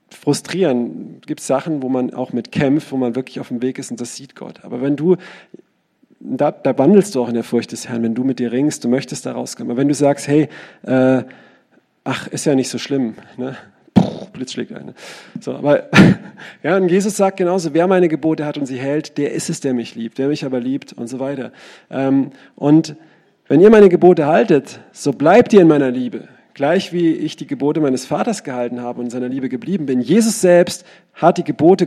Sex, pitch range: male, 130-175 Hz